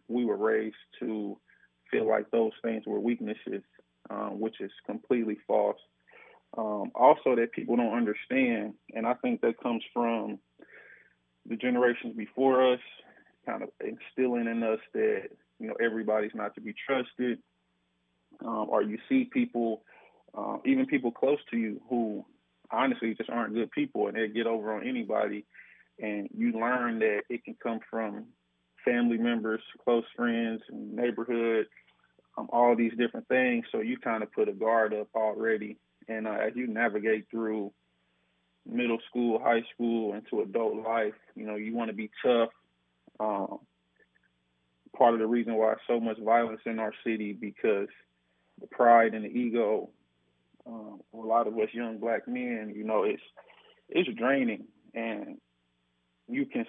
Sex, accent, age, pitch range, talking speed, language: male, American, 20-39, 105-120 Hz, 155 wpm, English